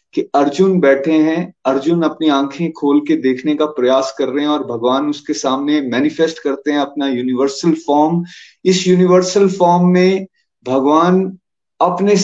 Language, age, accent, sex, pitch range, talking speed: Hindi, 30-49, native, male, 140-190 Hz, 150 wpm